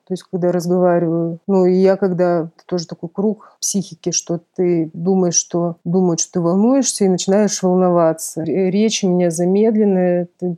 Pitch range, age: 170-190 Hz, 30-49